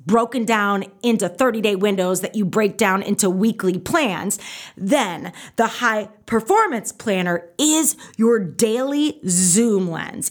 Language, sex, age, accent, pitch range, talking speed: English, female, 30-49, American, 190-270 Hz, 130 wpm